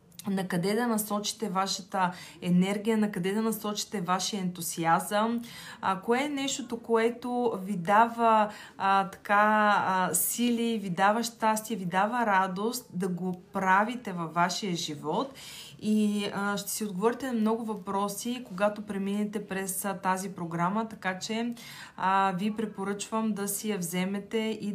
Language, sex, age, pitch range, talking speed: Bulgarian, female, 20-39, 190-220 Hz, 145 wpm